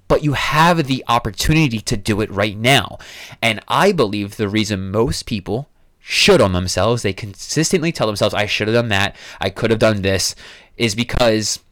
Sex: male